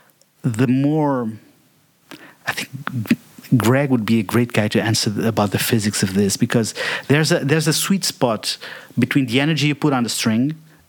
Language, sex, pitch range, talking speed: English, male, 115-140 Hz, 175 wpm